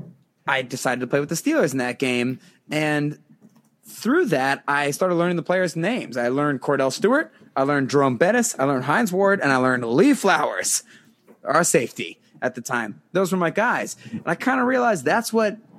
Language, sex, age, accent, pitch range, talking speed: English, male, 30-49, American, 130-170 Hz, 200 wpm